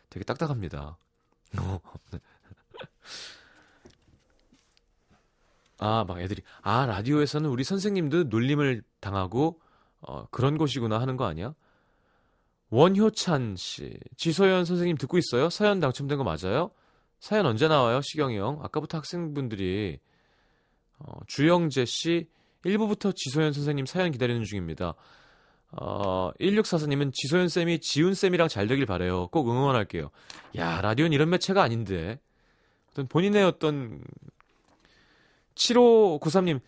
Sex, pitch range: male, 115-175 Hz